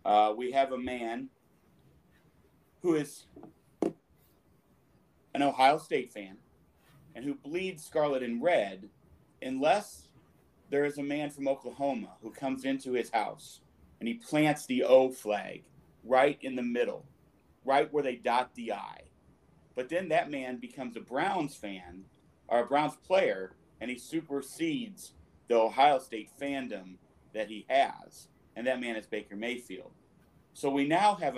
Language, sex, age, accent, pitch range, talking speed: English, male, 40-59, American, 115-150 Hz, 145 wpm